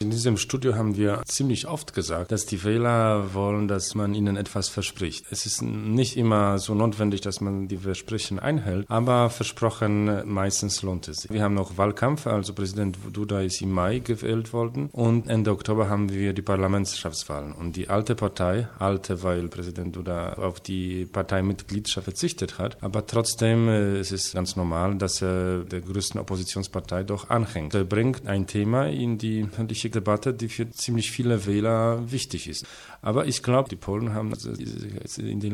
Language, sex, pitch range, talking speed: English, male, 95-115 Hz, 170 wpm